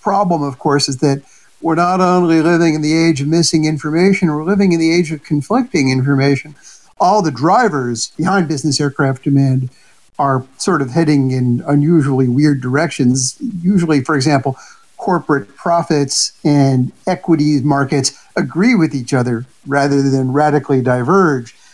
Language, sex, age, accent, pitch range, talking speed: English, male, 50-69, American, 135-175 Hz, 150 wpm